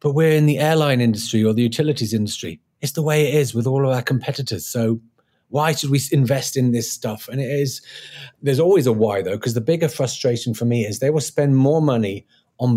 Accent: British